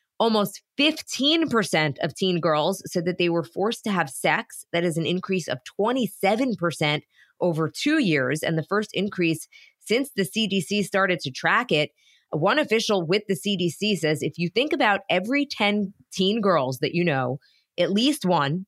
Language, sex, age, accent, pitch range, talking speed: English, female, 20-39, American, 165-210 Hz, 170 wpm